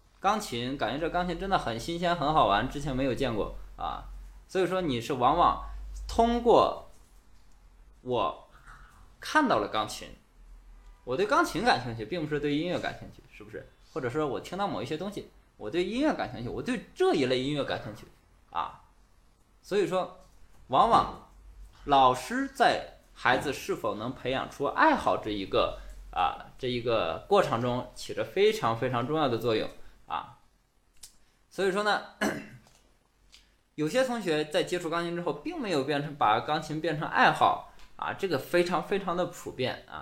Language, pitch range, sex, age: Chinese, 120-180 Hz, male, 20-39